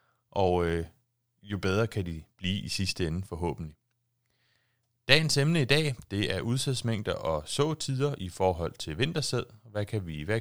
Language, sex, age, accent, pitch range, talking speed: Danish, male, 30-49, native, 95-125 Hz, 160 wpm